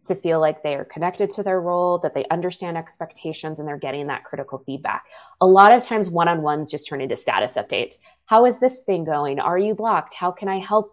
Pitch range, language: 155-195 Hz, English